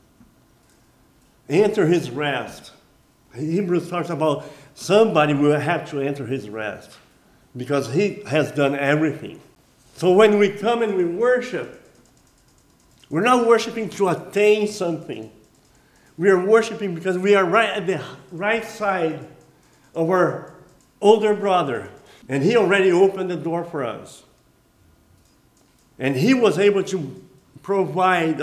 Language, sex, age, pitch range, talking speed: English, male, 50-69, 150-210 Hz, 125 wpm